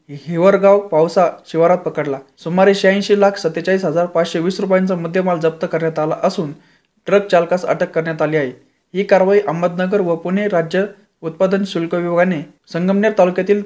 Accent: native